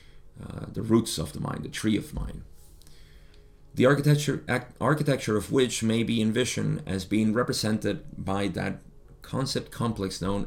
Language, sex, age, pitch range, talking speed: English, male, 30-49, 85-115 Hz, 155 wpm